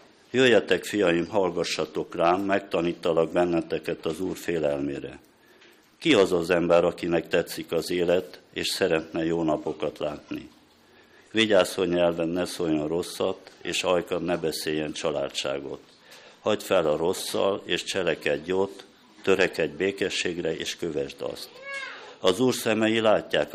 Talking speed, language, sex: 125 wpm, Hungarian, male